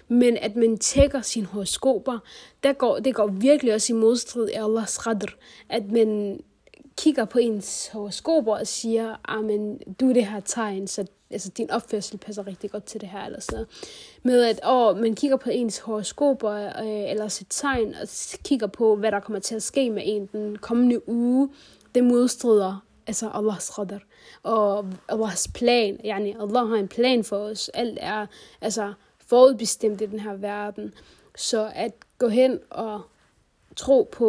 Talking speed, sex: 170 wpm, female